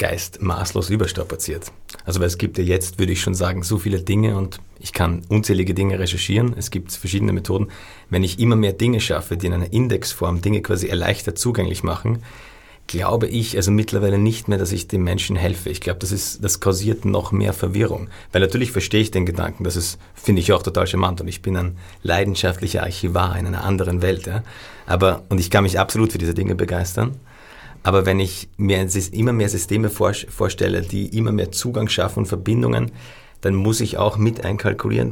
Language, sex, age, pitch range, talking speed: German, male, 40-59, 90-110 Hz, 200 wpm